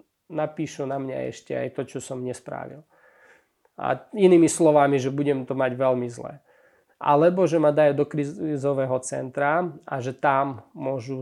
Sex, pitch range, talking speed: male, 130-150 Hz, 155 wpm